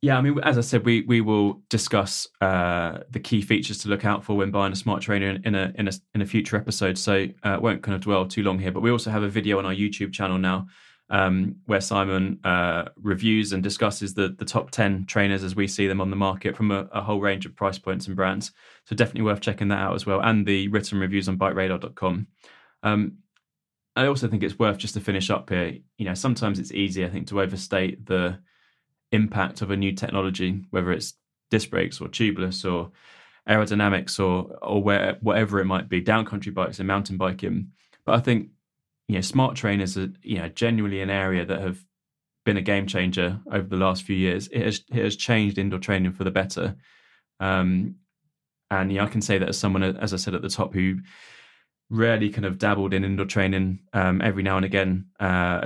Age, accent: 20-39, British